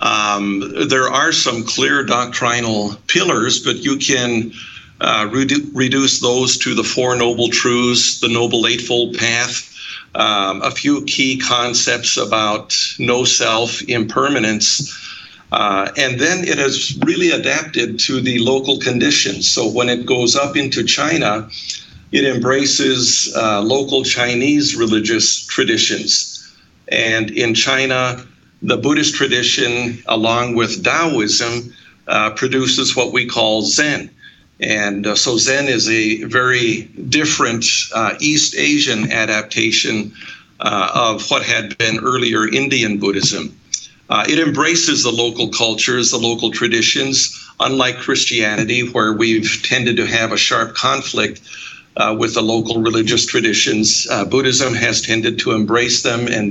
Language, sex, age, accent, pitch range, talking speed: English, male, 50-69, American, 110-130 Hz, 130 wpm